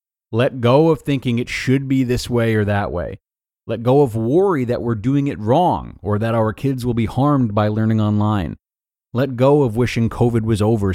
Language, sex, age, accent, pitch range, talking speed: English, male, 30-49, American, 95-135 Hz, 210 wpm